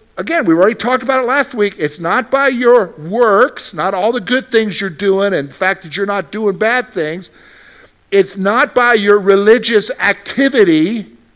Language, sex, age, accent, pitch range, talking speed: English, male, 50-69, American, 140-220 Hz, 185 wpm